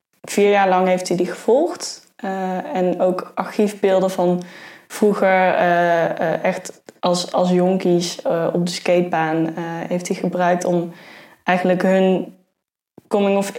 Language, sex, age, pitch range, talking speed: Dutch, female, 10-29, 175-195 Hz, 135 wpm